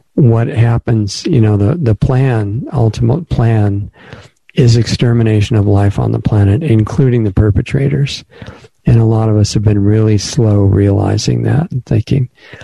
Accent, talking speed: American, 150 wpm